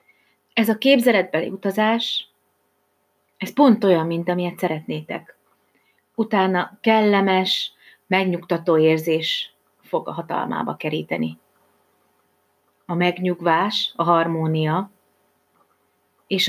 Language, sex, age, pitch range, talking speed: Hungarian, female, 30-49, 160-210 Hz, 85 wpm